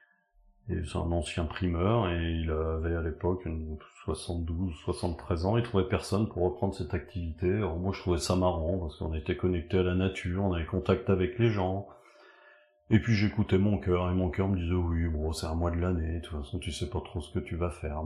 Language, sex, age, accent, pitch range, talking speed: French, male, 40-59, French, 85-100 Hz, 225 wpm